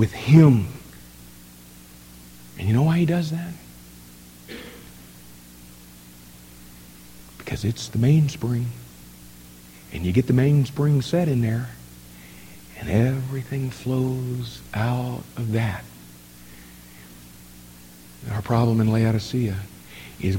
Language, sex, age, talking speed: English, male, 50-69, 95 wpm